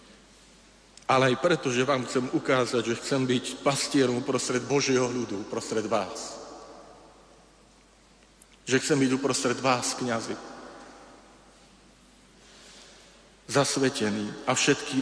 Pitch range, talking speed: 115-140 Hz, 100 wpm